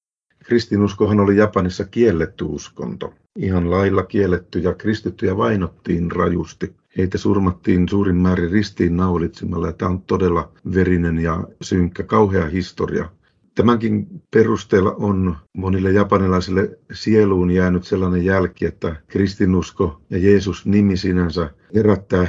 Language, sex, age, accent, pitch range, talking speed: Finnish, male, 50-69, native, 85-100 Hz, 110 wpm